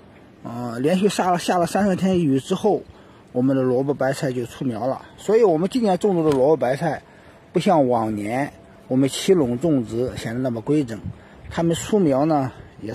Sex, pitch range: male, 135-195 Hz